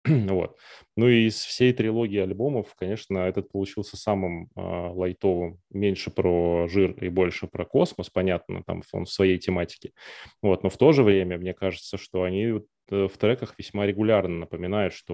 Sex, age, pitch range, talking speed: male, 20-39, 90-100 Hz, 165 wpm